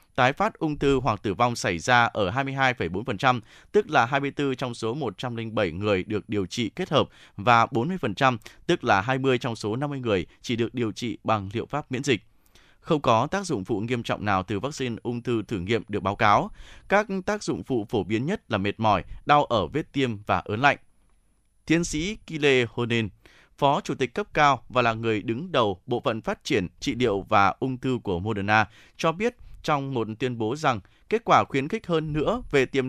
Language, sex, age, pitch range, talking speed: Vietnamese, male, 20-39, 110-140 Hz, 210 wpm